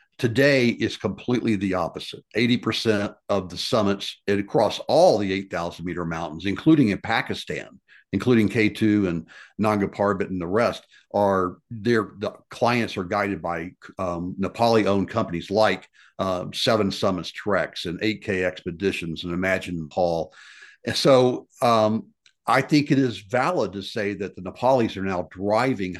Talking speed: 150 wpm